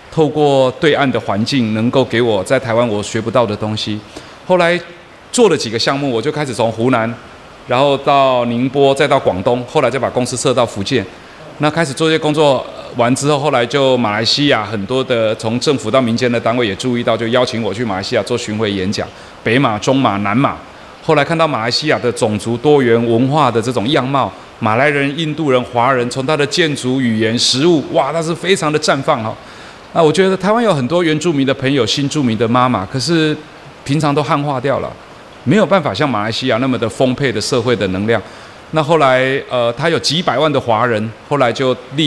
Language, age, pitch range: Chinese, 30-49, 115-150 Hz